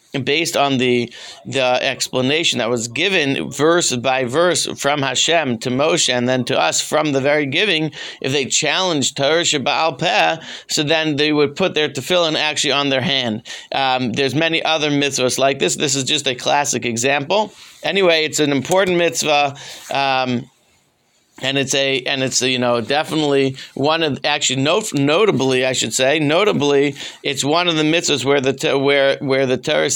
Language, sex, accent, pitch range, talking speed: English, male, American, 125-150 Hz, 175 wpm